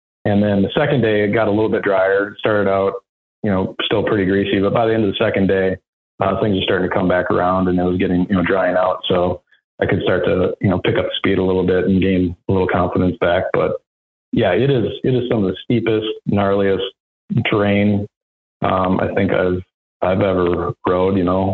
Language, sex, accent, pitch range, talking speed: English, male, American, 90-105 Hz, 230 wpm